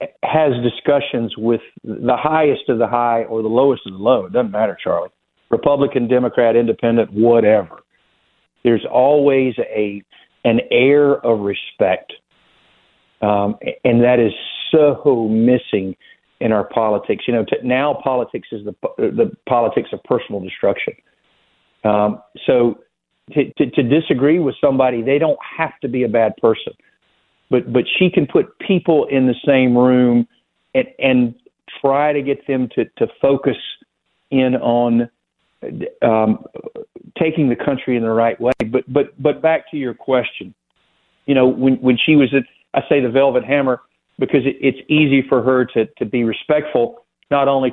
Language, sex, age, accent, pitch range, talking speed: English, male, 50-69, American, 115-145 Hz, 160 wpm